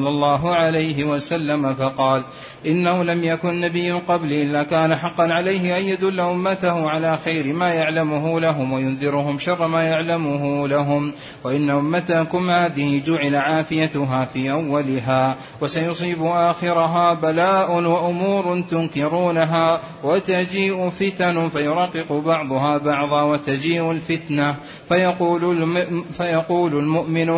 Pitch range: 145-170 Hz